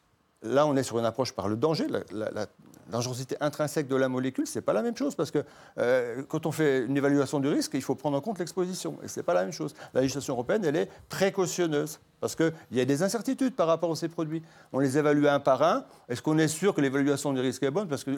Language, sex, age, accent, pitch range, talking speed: French, male, 40-59, French, 130-170 Hz, 265 wpm